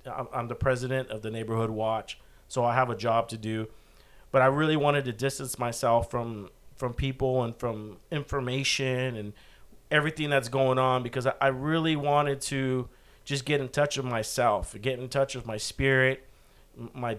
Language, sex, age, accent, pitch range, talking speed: English, male, 40-59, American, 120-140 Hz, 175 wpm